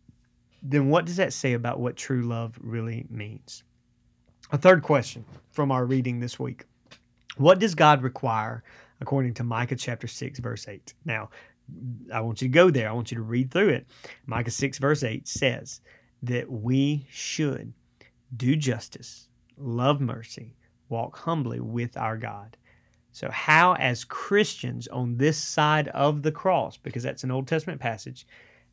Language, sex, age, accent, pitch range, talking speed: English, male, 30-49, American, 115-140 Hz, 160 wpm